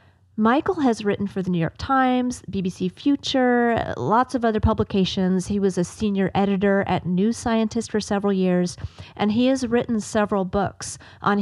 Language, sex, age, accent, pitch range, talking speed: English, female, 30-49, American, 175-210 Hz, 170 wpm